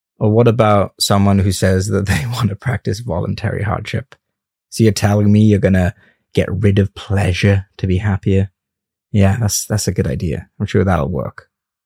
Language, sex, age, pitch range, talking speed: English, male, 20-39, 100-120 Hz, 185 wpm